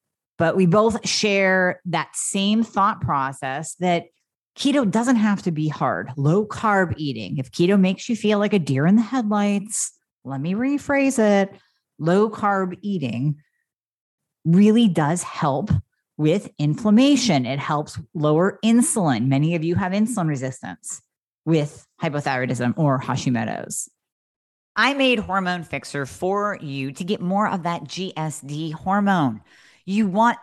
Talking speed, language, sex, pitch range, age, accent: 140 wpm, English, female, 155-205 Hz, 40-59, American